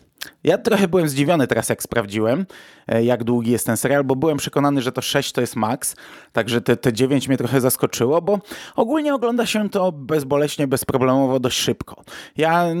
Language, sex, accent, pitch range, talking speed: Polish, male, native, 125-155 Hz, 180 wpm